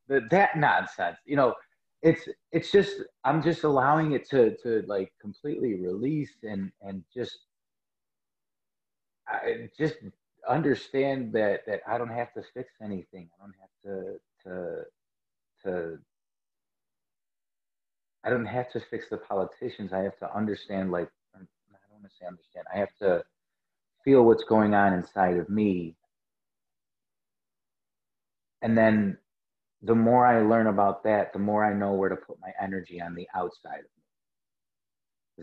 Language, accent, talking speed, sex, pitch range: English, American, 145 wpm, male, 95-125 Hz